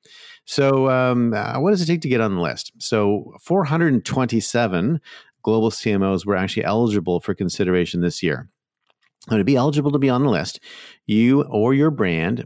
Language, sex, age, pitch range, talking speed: English, male, 50-69, 95-120 Hz, 170 wpm